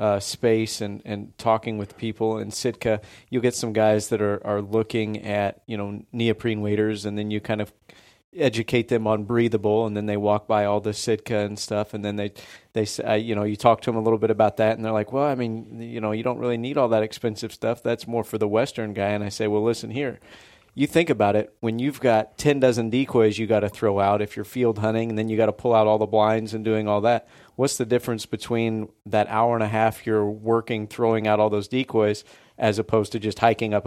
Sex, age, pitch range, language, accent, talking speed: male, 30-49, 105-115 Hz, English, American, 245 wpm